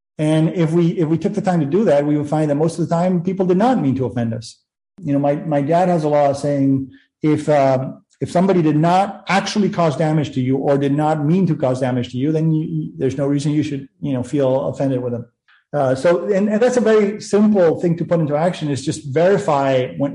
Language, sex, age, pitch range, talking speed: English, male, 40-59, 140-170 Hz, 255 wpm